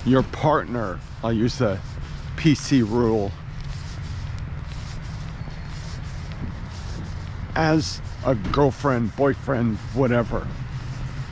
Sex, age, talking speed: male, 50-69, 65 wpm